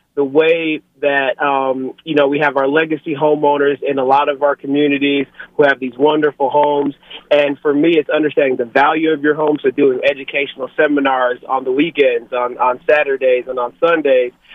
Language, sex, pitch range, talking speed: English, male, 140-165 Hz, 185 wpm